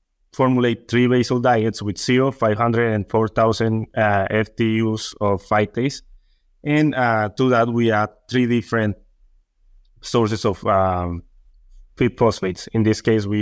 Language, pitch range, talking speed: English, 100-115 Hz, 135 wpm